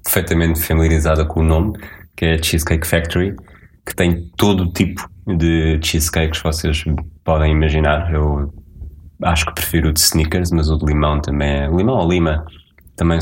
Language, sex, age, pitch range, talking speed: Portuguese, male, 20-39, 80-90 Hz, 165 wpm